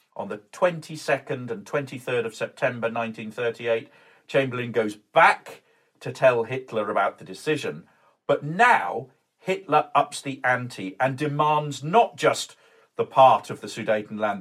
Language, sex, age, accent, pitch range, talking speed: English, male, 50-69, British, 125-160 Hz, 135 wpm